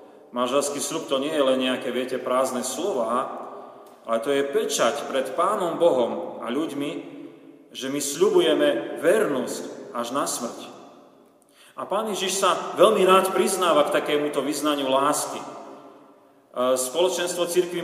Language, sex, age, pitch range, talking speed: Slovak, male, 40-59, 135-180 Hz, 130 wpm